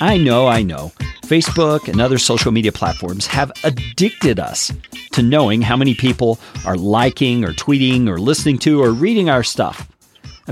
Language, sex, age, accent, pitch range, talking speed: English, male, 40-59, American, 115-170 Hz, 170 wpm